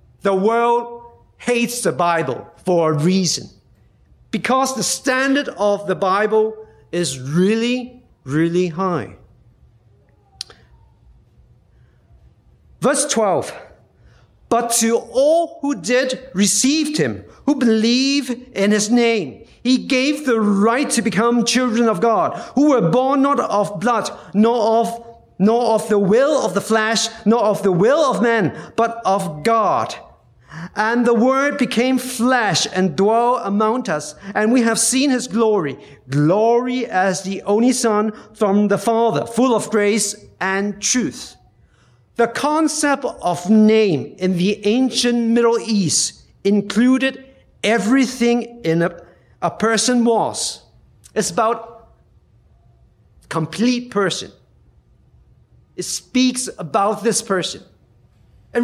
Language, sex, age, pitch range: Chinese, male, 50-69, 190-245 Hz